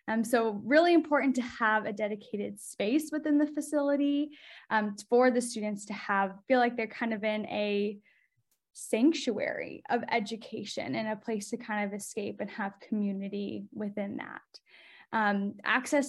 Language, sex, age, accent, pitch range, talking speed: English, female, 10-29, American, 210-250 Hz, 155 wpm